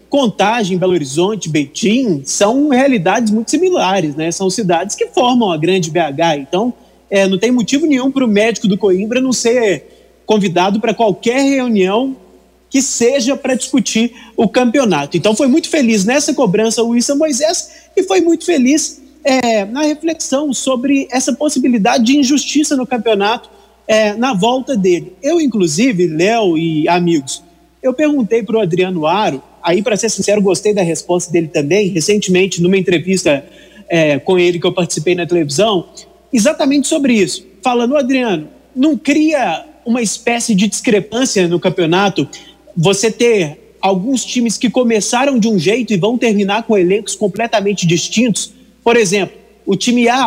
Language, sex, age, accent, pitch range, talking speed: Portuguese, male, 30-49, Brazilian, 190-255 Hz, 155 wpm